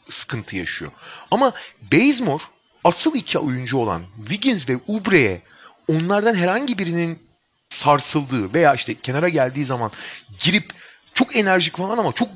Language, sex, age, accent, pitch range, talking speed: Turkish, male, 40-59, native, 140-195 Hz, 125 wpm